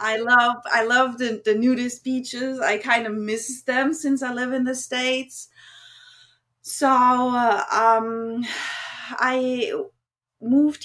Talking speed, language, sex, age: 135 wpm, English, female, 30-49